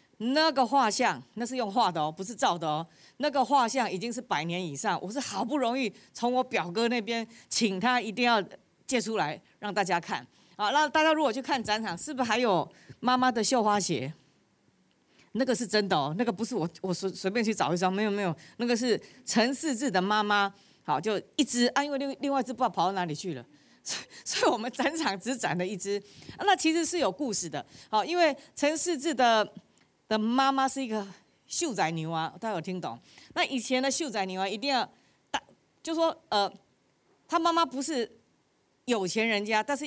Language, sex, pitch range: Chinese, female, 195-270 Hz